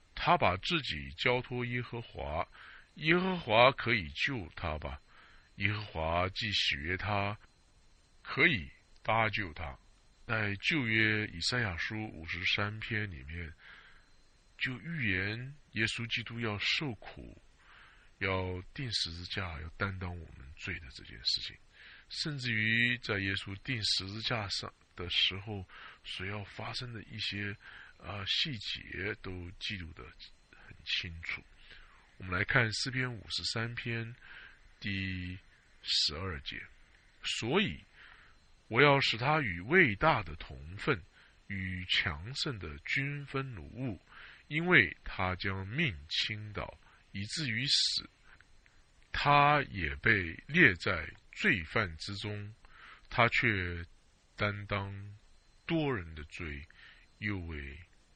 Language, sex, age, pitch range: English, male, 50-69, 90-115 Hz